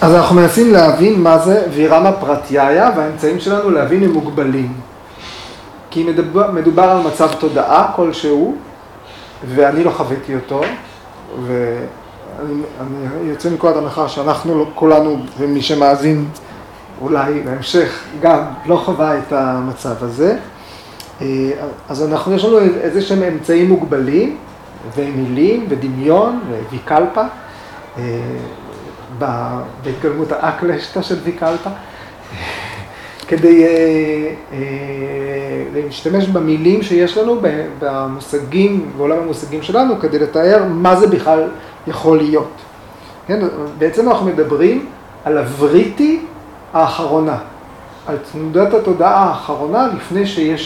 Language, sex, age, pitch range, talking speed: Hebrew, male, 30-49, 140-170 Hz, 105 wpm